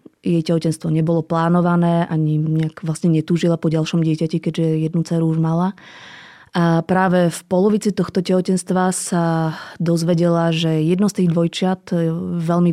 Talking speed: 135 wpm